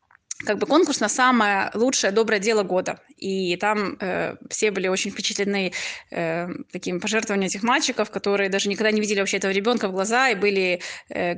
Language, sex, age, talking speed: Russian, female, 20-39, 180 wpm